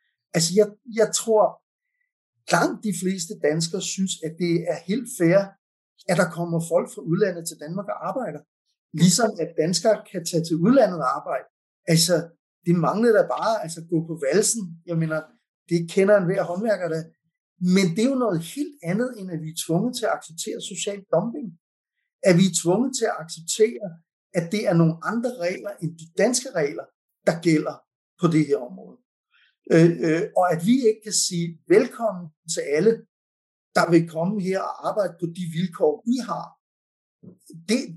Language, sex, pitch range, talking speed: Danish, male, 165-220 Hz, 175 wpm